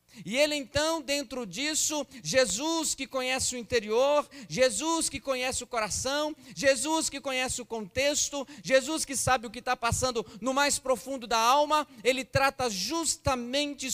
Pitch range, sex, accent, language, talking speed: 220-275 Hz, male, Brazilian, Portuguese, 150 wpm